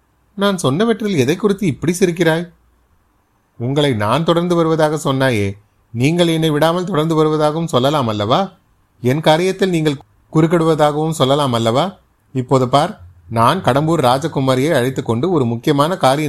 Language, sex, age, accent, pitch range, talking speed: Tamil, male, 30-49, native, 115-160 Hz, 100 wpm